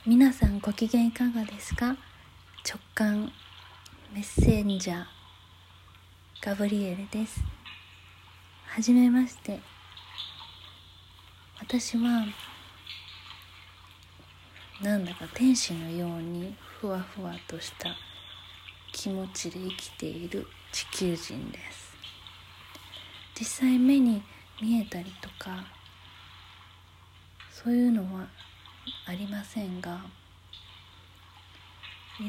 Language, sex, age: Japanese, female, 20-39